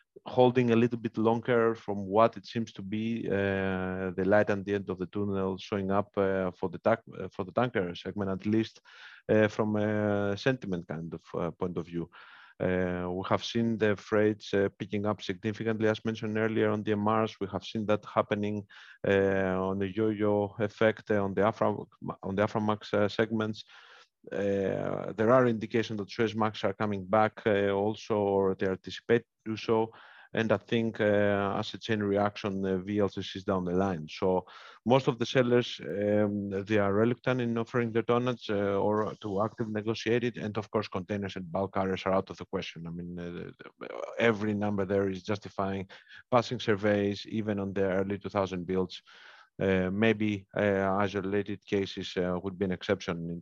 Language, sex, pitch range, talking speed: English, male, 95-110 Hz, 185 wpm